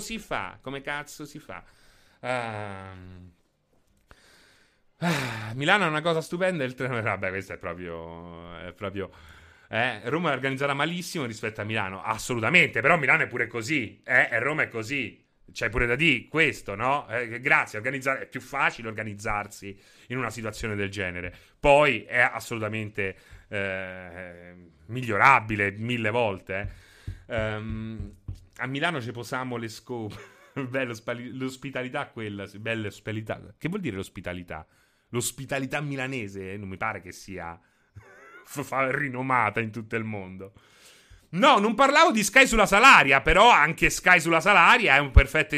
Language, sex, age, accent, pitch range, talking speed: Italian, male, 30-49, native, 100-160 Hz, 145 wpm